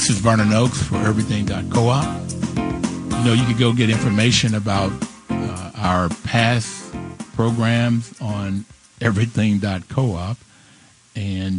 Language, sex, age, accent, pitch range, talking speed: English, male, 50-69, American, 100-125 Hz, 110 wpm